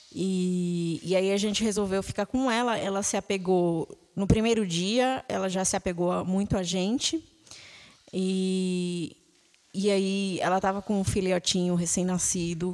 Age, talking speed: 20-39, 145 wpm